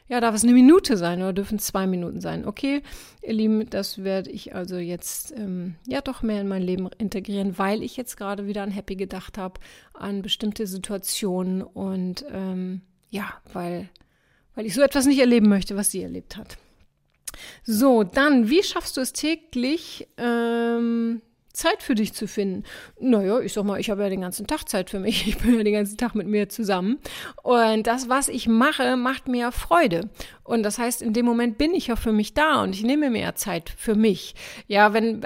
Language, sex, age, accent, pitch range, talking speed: German, female, 30-49, German, 195-235 Hz, 205 wpm